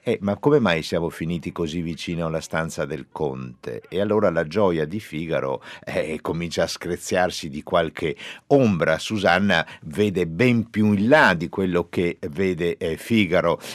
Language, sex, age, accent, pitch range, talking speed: Italian, male, 50-69, native, 80-105 Hz, 160 wpm